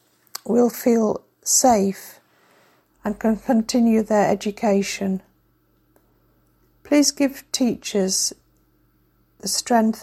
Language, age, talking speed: English, 50-69, 80 wpm